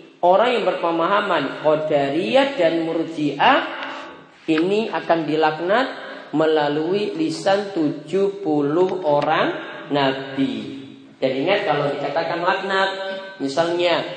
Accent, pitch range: native, 150-190 Hz